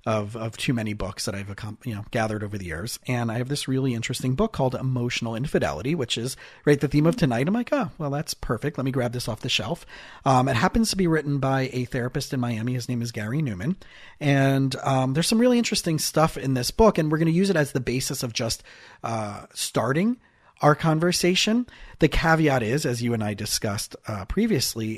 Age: 40-59